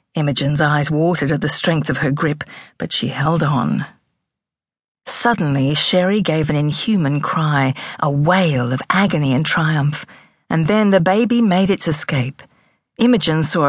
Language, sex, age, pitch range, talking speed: English, female, 50-69, 145-190 Hz, 150 wpm